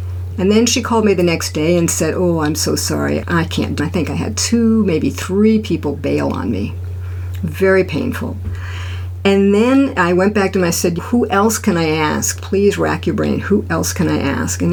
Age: 50-69